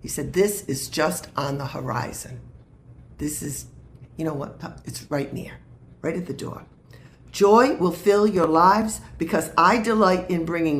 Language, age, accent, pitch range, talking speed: English, 50-69, American, 150-215 Hz, 165 wpm